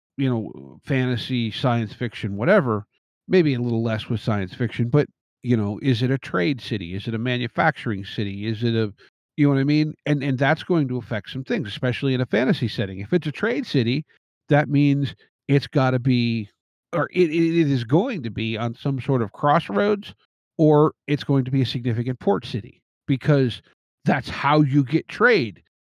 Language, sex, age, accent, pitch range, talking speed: English, male, 50-69, American, 115-150 Hz, 200 wpm